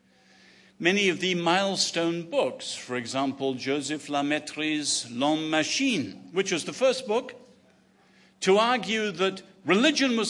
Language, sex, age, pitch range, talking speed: English, male, 50-69, 135-200 Hz, 120 wpm